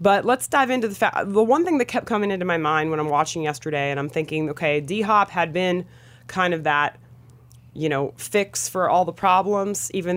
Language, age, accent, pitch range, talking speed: English, 30-49, American, 145-200 Hz, 225 wpm